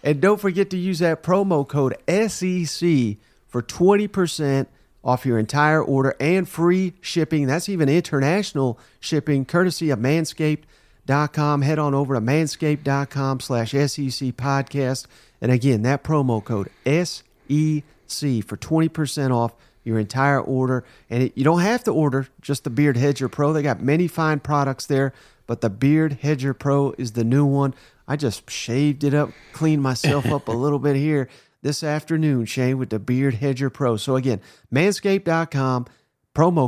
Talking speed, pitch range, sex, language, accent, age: 155 wpm, 130-160 Hz, male, English, American, 40-59